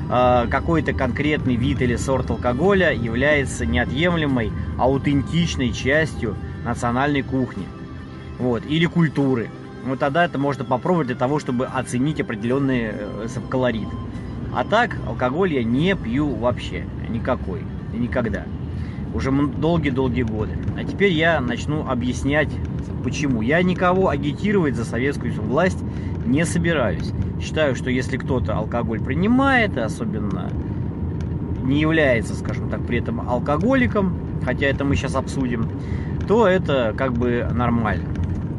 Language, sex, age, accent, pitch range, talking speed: Russian, male, 20-39, native, 105-150 Hz, 120 wpm